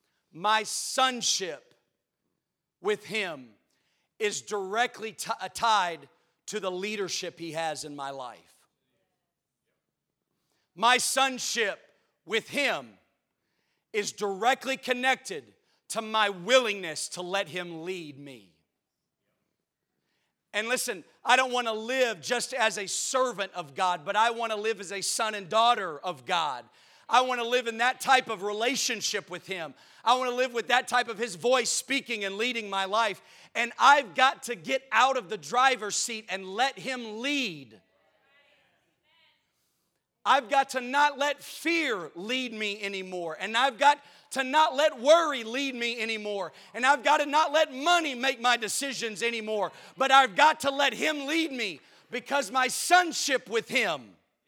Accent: American